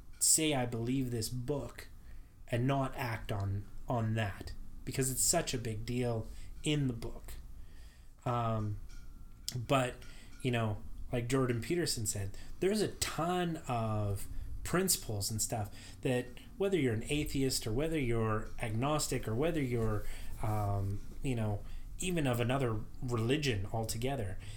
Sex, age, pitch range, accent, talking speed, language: male, 30-49, 100-130 Hz, American, 135 wpm, English